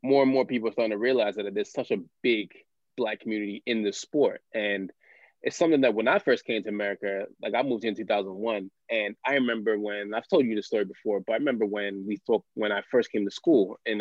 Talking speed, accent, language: 245 wpm, American, English